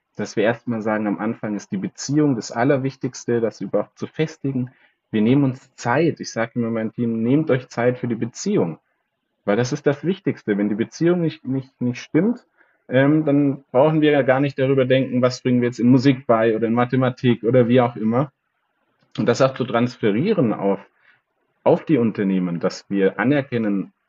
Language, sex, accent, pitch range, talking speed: German, male, German, 115-145 Hz, 190 wpm